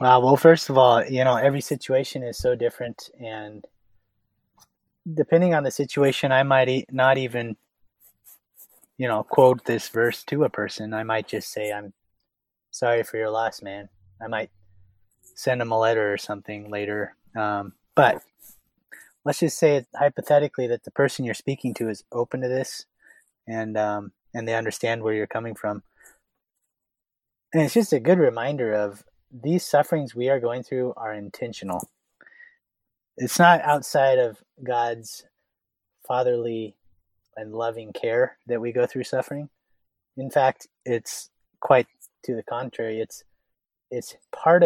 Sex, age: male, 20-39